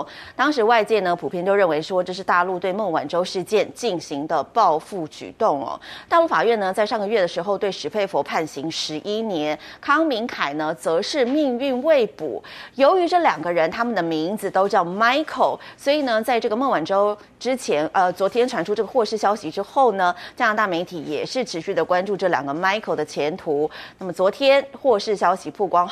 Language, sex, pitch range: Chinese, female, 175-245 Hz